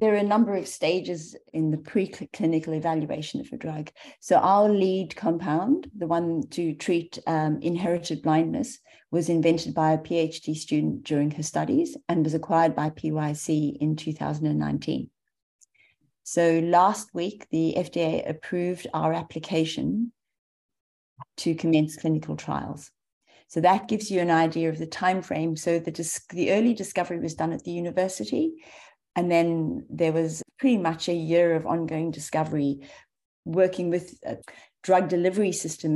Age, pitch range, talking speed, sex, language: 40-59, 155-180 Hz, 150 wpm, female, English